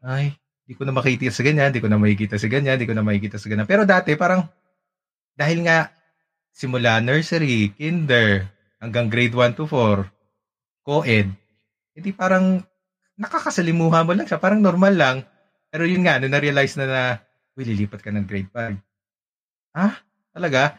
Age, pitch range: 20-39, 110-155 Hz